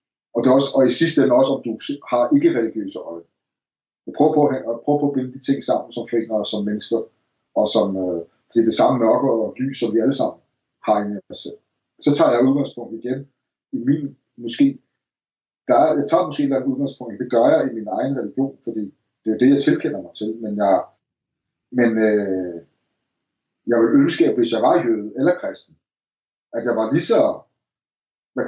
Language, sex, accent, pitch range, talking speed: Danish, male, native, 110-140 Hz, 210 wpm